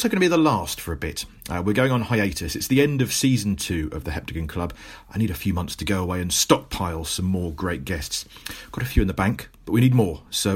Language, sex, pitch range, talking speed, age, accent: English, male, 95-135 Hz, 265 wpm, 40-59, British